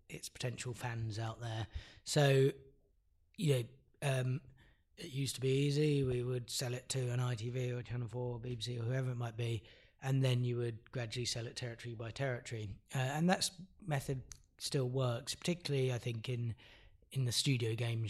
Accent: British